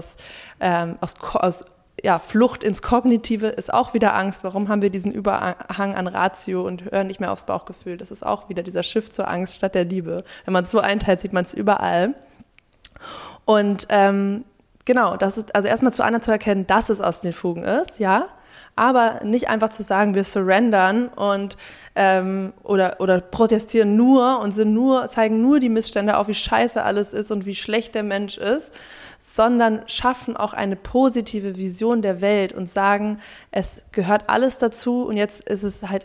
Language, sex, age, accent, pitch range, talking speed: German, female, 20-39, German, 190-220 Hz, 190 wpm